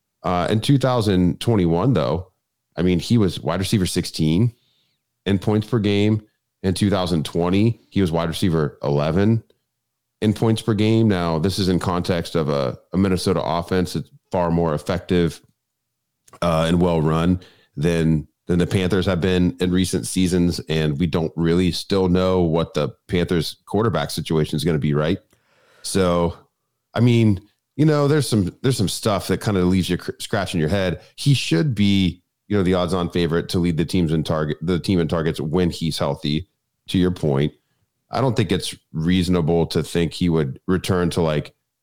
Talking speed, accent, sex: 175 wpm, American, male